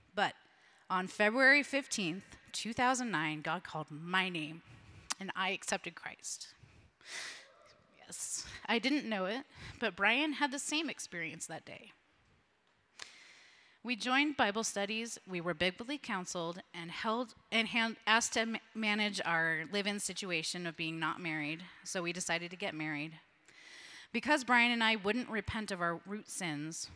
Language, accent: English, American